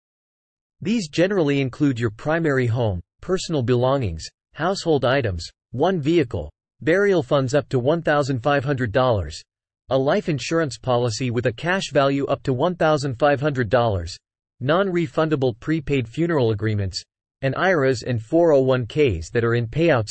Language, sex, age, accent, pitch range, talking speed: English, male, 40-59, American, 115-155 Hz, 120 wpm